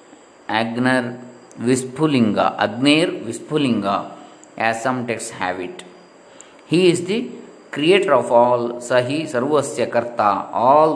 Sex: male